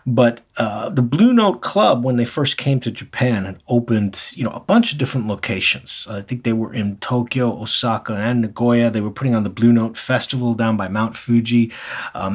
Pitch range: 105-130 Hz